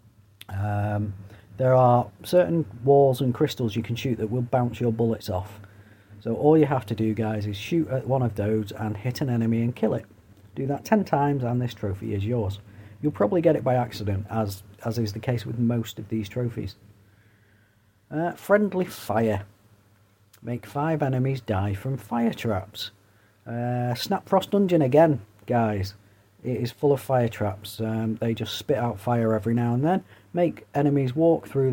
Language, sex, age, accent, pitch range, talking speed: English, male, 40-59, British, 105-135 Hz, 185 wpm